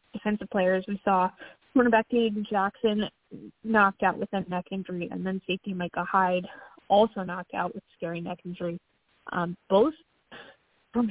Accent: American